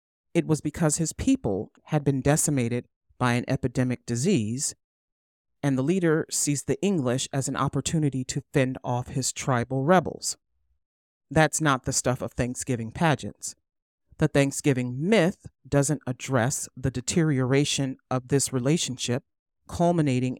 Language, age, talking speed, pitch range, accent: English, 40-59, 130 wpm, 125-150 Hz, American